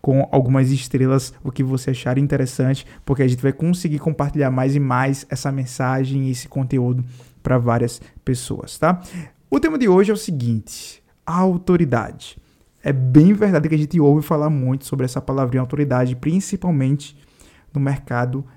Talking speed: 160 wpm